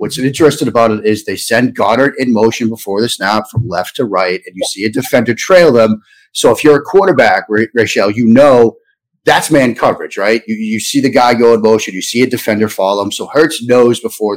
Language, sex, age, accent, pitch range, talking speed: English, male, 30-49, American, 100-130 Hz, 225 wpm